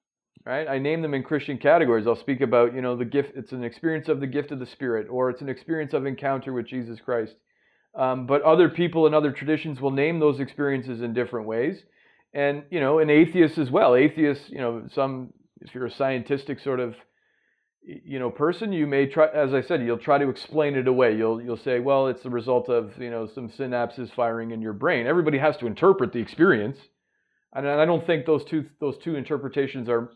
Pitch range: 125-155 Hz